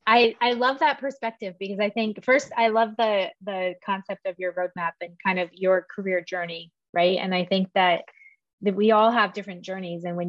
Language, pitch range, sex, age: English, 180-225 Hz, female, 20-39